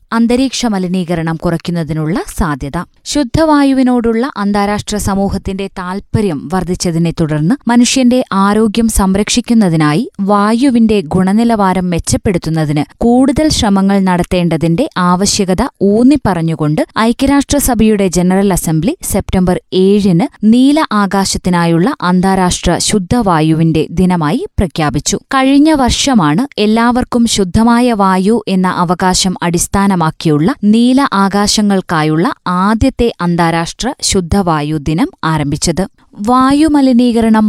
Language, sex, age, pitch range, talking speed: Malayalam, female, 20-39, 175-230 Hz, 80 wpm